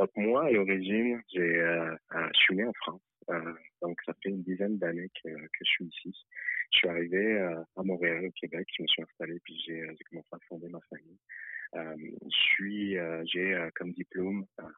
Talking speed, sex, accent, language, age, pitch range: 205 wpm, male, French, French, 30-49, 85-90 Hz